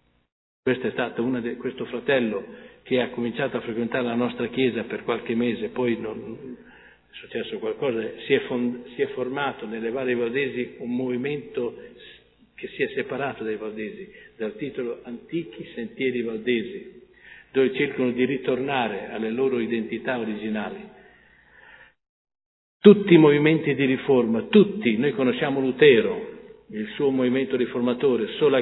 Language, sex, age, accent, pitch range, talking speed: Italian, male, 50-69, native, 115-150 Hz, 125 wpm